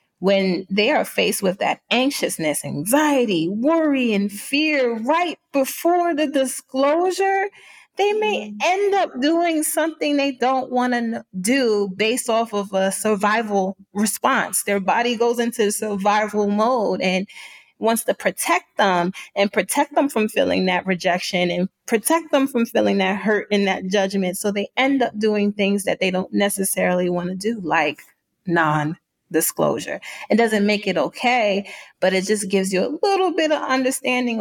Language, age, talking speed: English, 30-49, 160 wpm